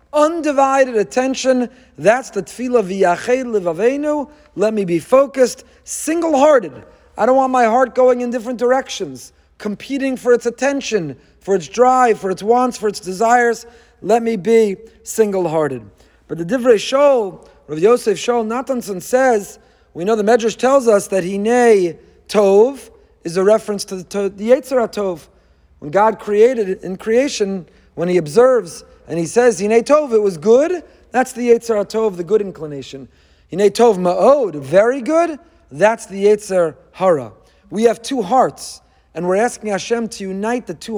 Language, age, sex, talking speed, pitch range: English, 40-59, male, 160 wpm, 185-245 Hz